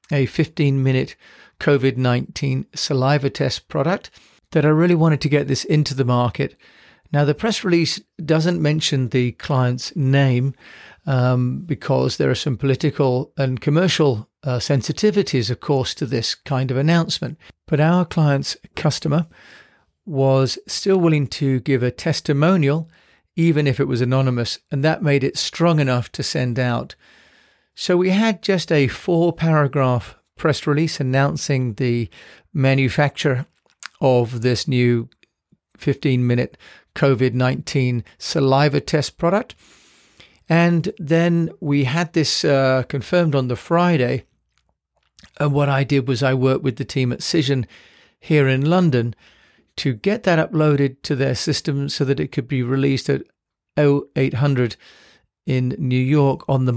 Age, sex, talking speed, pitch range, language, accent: 40-59, male, 140 wpm, 130-155 Hz, English, British